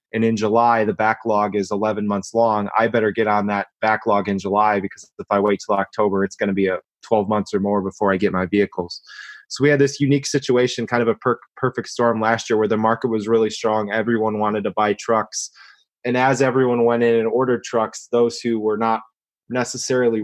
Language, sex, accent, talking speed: English, male, American, 220 wpm